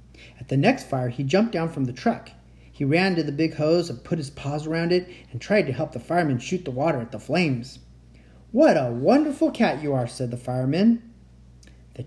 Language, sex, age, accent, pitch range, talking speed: English, male, 40-59, American, 115-185 Hz, 220 wpm